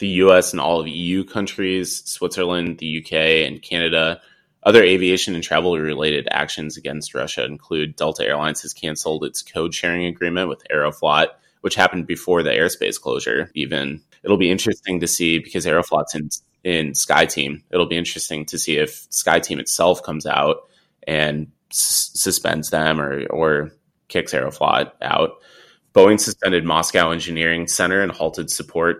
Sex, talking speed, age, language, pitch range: male, 155 wpm, 20-39, English, 75-90 Hz